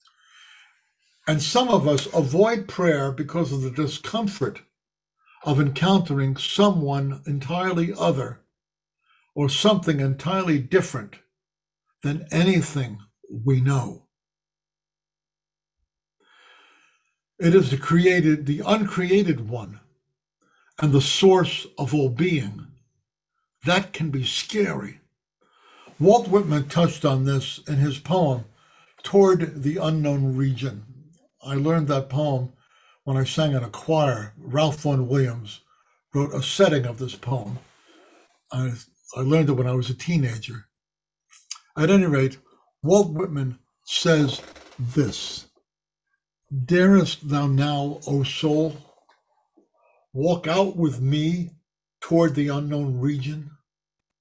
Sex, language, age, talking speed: male, English, 60-79, 110 wpm